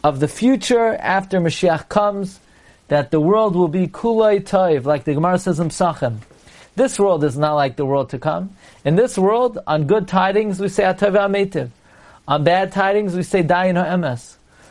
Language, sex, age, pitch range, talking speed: English, male, 40-59, 155-205 Hz, 180 wpm